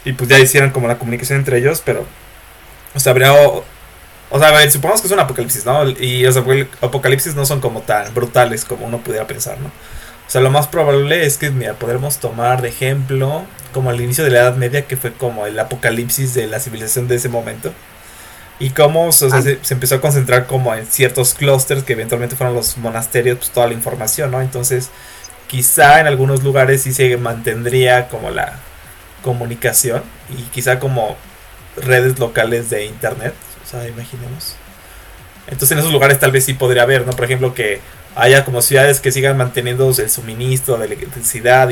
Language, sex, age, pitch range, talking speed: Spanish, male, 20-39, 115-135 Hz, 185 wpm